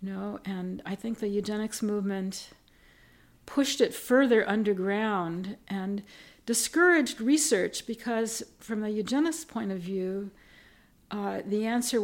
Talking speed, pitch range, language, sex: 120 wpm, 195-235 Hz, English, female